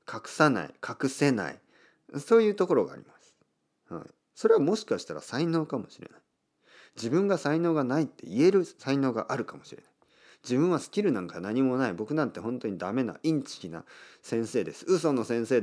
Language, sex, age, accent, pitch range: Japanese, male, 40-59, native, 95-155 Hz